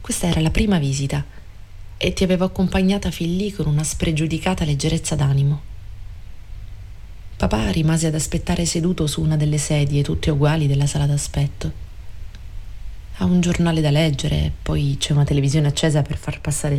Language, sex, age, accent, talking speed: Italian, female, 30-49, native, 155 wpm